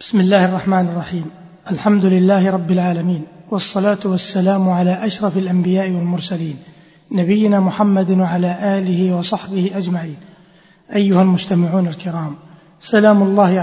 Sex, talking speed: male, 110 wpm